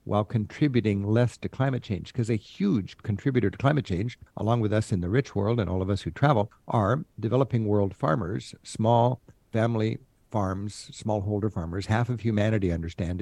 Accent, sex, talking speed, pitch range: American, male, 180 wpm, 105-130 Hz